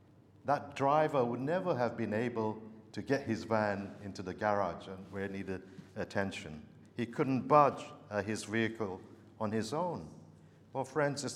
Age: 50-69